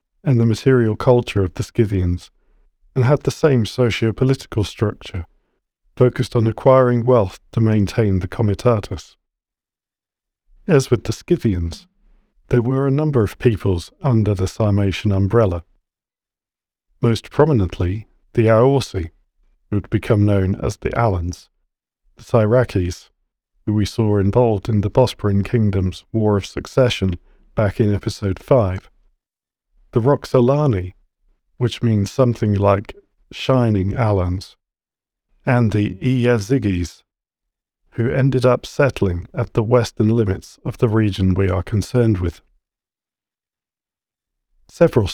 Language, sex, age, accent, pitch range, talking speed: English, male, 40-59, British, 95-125 Hz, 120 wpm